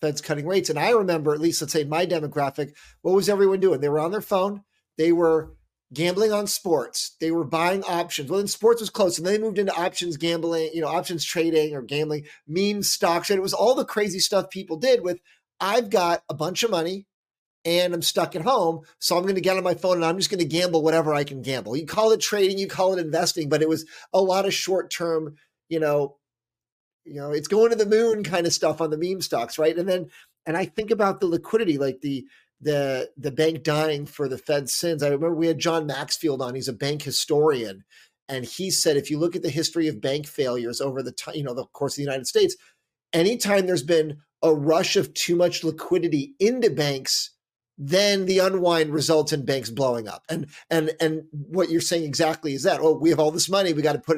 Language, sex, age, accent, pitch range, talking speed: English, male, 40-59, American, 150-185 Hz, 235 wpm